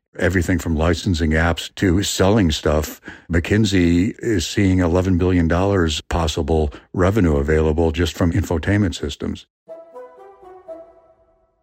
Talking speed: 105 wpm